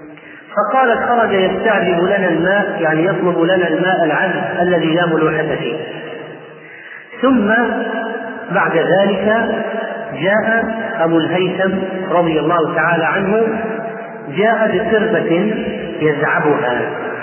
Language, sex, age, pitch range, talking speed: Arabic, male, 40-59, 170-215 Hz, 90 wpm